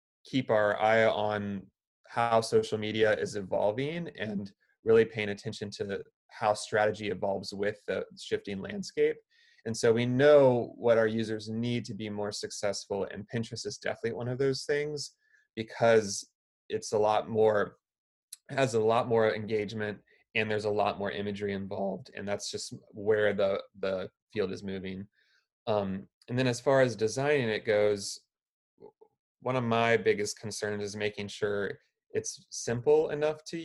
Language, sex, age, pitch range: English, male, 30-49, 105-150 Hz